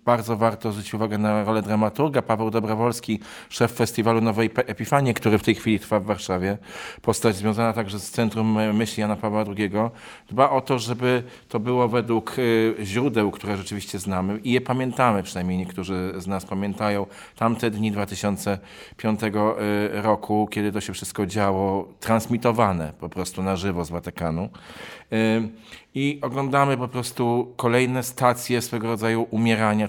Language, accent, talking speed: Polish, native, 145 wpm